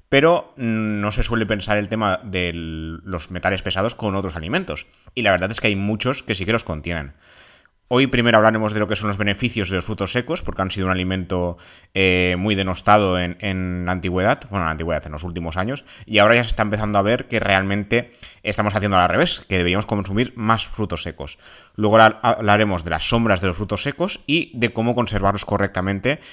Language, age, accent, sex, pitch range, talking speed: Spanish, 30-49, Spanish, male, 95-110 Hz, 210 wpm